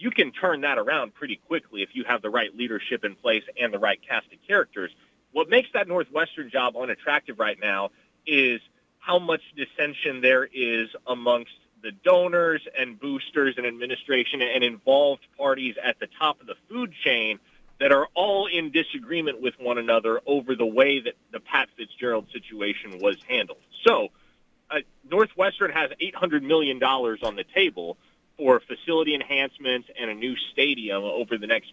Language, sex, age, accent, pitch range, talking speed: English, male, 30-49, American, 125-200 Hz, 170 wpm